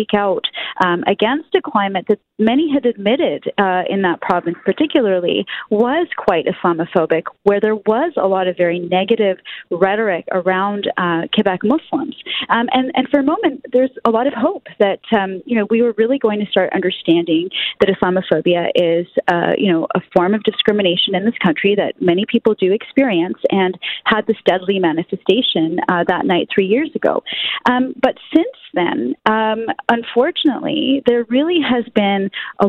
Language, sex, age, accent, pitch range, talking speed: English, female, 30-49, American, 185-255 Hz, 170 wpm